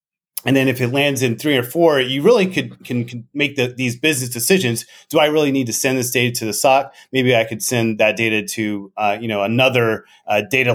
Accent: American